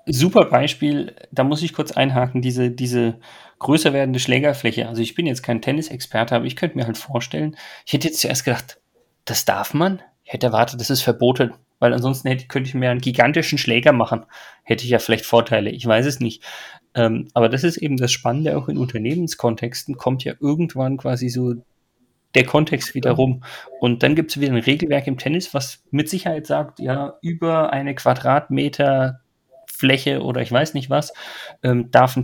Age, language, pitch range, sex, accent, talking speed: 30-49, German, 120-145 Hz, male, German, 190 wpm